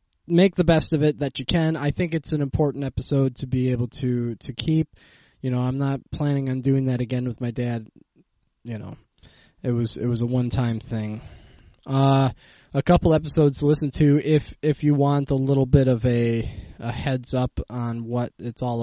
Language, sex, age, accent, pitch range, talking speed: English, male, 20-39, American, 120-145 Hz, 205 wpm